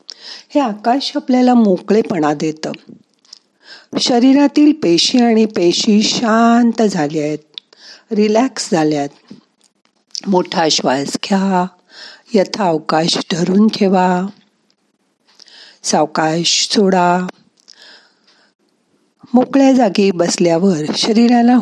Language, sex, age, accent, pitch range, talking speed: Marathi, female, 50-69, native, 175-240 Hz, 70 wpm